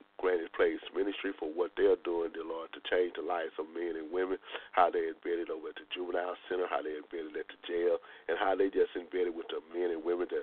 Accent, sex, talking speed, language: American, male, 240 wpm, English